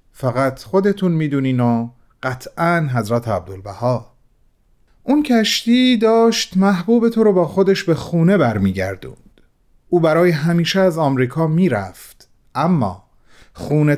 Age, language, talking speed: 40-59, Persian, 125 wpm